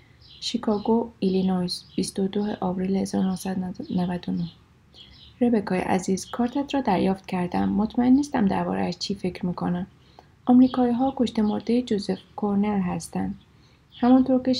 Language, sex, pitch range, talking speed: Persian, female, 185-235 Hz, 110 wpm